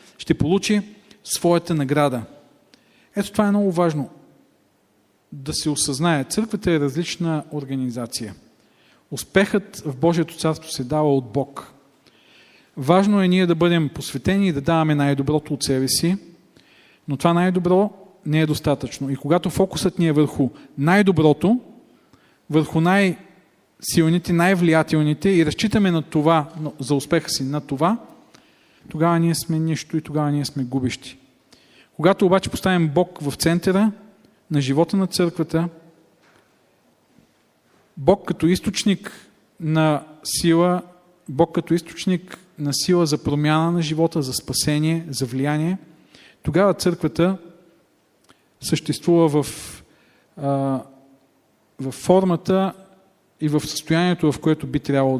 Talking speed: 125 wpm